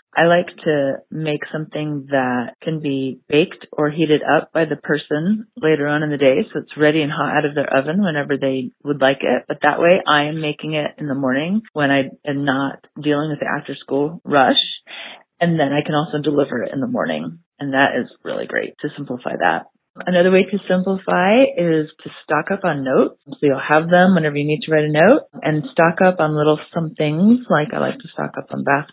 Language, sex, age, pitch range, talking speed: English, female, 30-49, 140-165 Hz, 220 wpm